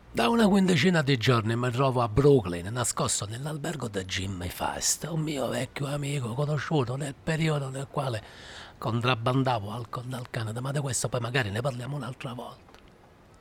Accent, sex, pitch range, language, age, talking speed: native, male, 110-150 Hz, Italian, 60-79, 160 wpm